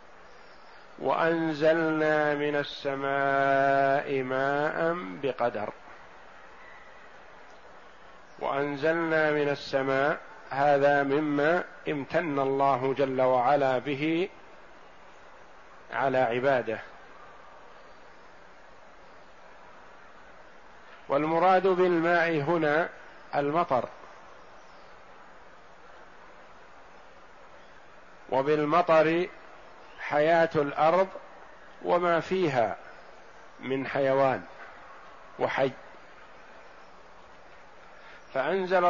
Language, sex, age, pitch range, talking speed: Arabic, male, 50-69, 140-160 Hz, 45 wpm